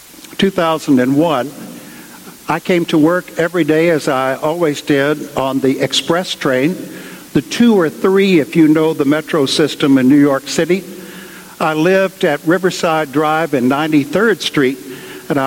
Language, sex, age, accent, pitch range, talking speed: English, male, 60-79, American, 140-180 Hz, 145 wpm